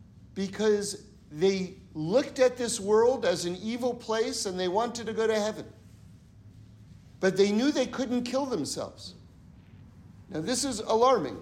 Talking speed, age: 145 wpm, 50-69